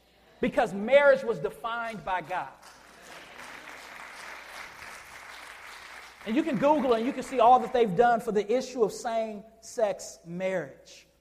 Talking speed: 130 wpm